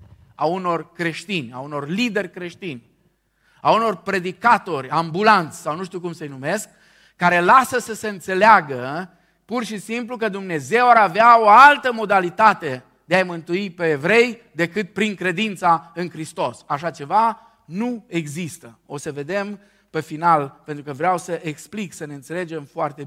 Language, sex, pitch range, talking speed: Romanian, male, 145-205 Hz, 155 wpm